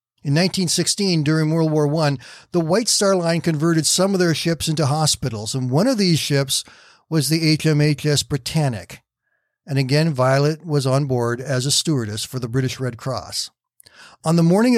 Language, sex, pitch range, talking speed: English, male, 130-160 Hz, 175 wpm